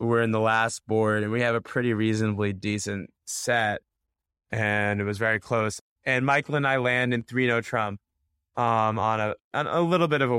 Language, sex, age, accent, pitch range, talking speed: English, male, 20-39, American, 105-130 Hz, 200 wpm